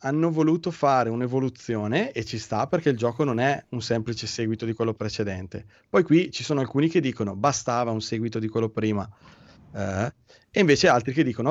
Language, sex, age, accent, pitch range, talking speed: Italian, male, 30-49, native, 120-155 Hz, 195 wpm